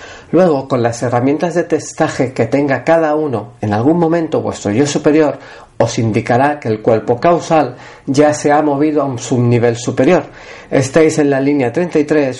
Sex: male